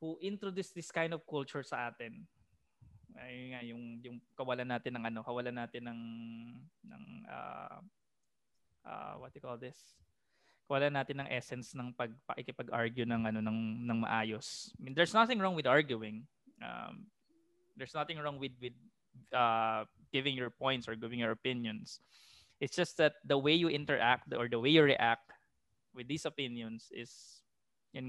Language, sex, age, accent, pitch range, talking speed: English, male, 20-39, Filipino, 120-160 Hz, 160 wpm